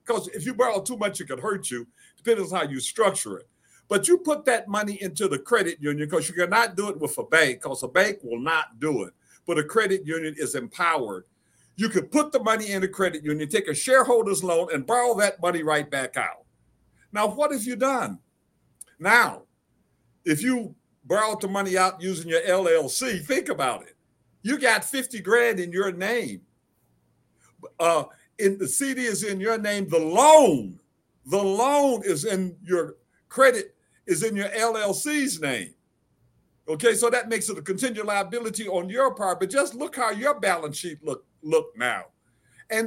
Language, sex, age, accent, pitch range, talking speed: English, male, 60-79, American, 185-245 Hz, 190 wpm